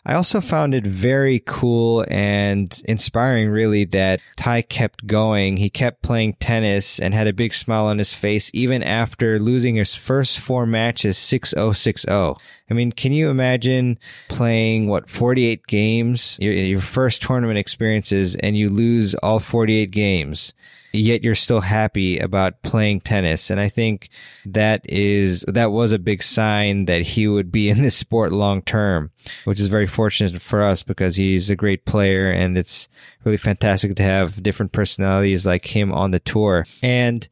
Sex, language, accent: male, English, American